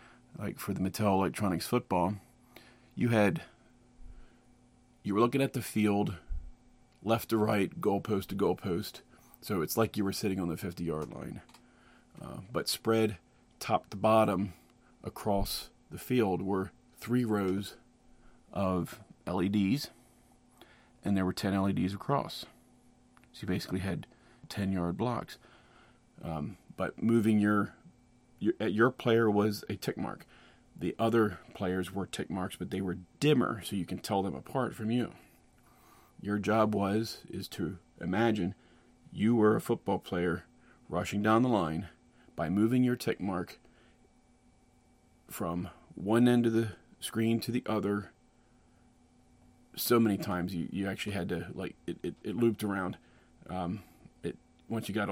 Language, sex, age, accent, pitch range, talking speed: English, male, 40-59, American, 95-115 Hz, 150 wpm